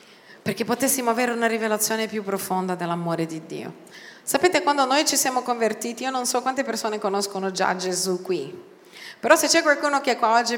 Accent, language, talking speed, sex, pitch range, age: native, Italian, 185 wpm, female, 190-250 Hz, 40-59